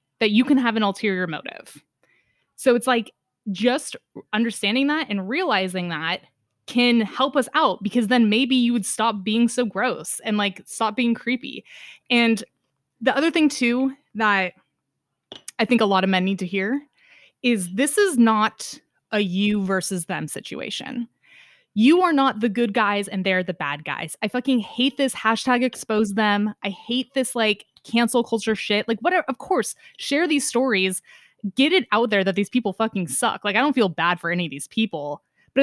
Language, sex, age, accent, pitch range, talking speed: English, female, 20-39, American, 200-265 Hz, 185 wpm